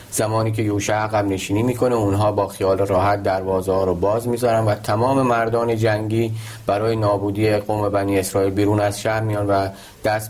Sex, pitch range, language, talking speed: male, 100-115 Hz, Persian, 175 wpm